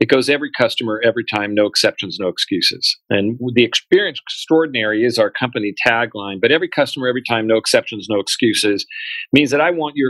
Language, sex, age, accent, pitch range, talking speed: English, male, 40-59, American, 105-125 Hz, 190 wpm